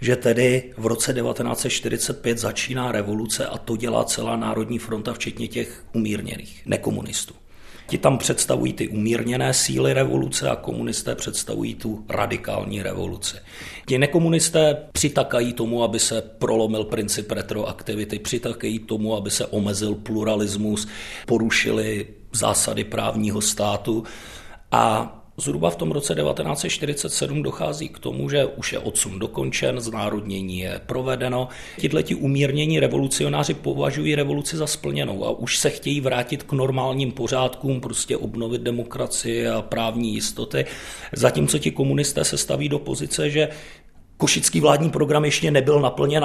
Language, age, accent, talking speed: Czech, 40-59, native, 130 wpm